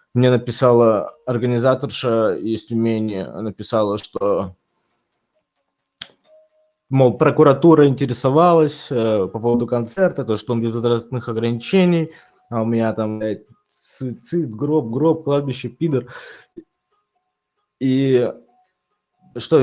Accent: native